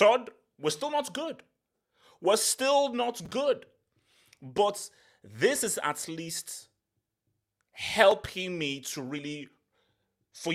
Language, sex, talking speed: English, male, 100 wpm